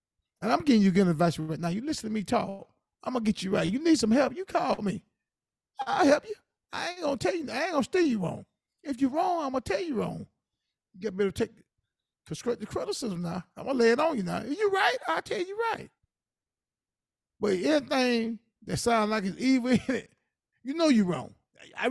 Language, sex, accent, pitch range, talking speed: English, male, American, 195-250 Hz, 240 wpm